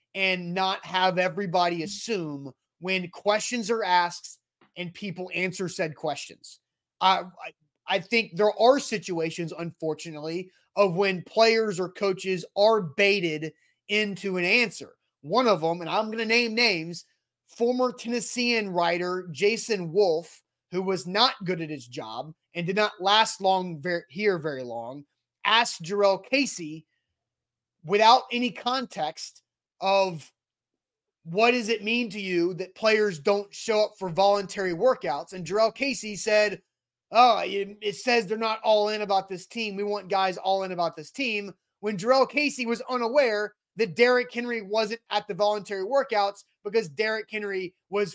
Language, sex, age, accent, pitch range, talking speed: English, male, 30-49, American, 180-225 Hz, 150 wpm